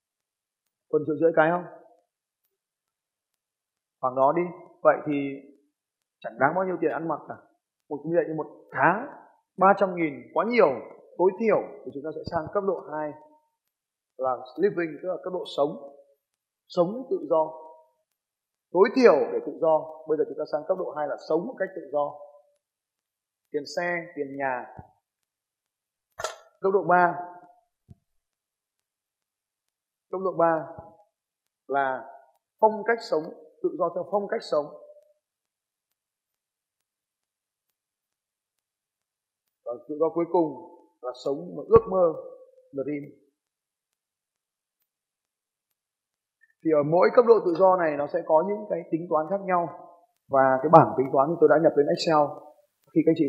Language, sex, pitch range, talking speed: Vietnamese, male, 145-205 Hz, 145 wpm